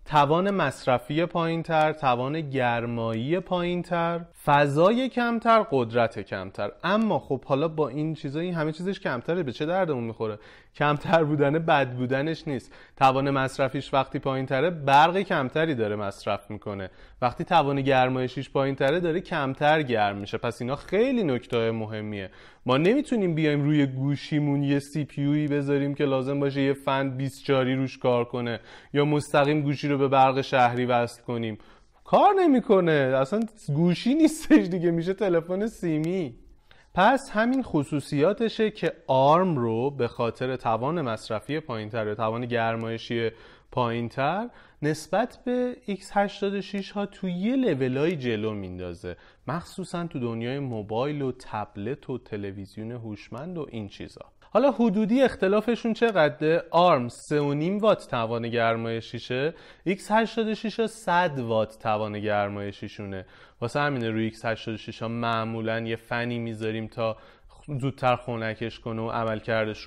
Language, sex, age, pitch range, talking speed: Persian, male, 30-49, 115-170 Hz, 130 wpm